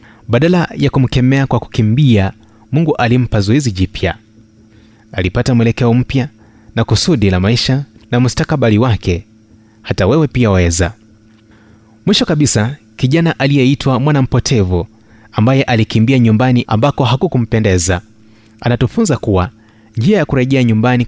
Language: Swahili